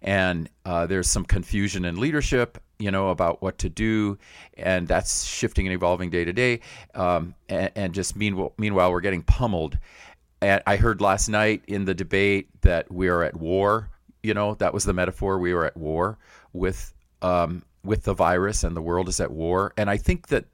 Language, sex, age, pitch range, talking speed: English, male, 40-59, 85-100 Hz, 195 wpm